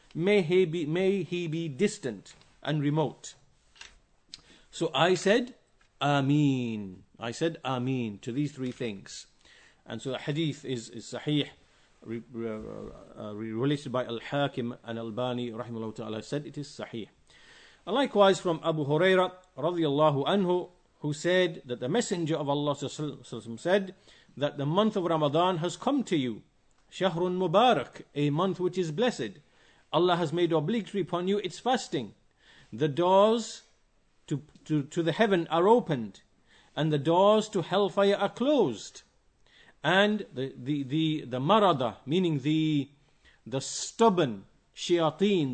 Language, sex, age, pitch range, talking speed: English, male, 50-69, 135-190 Hz, 140 wpm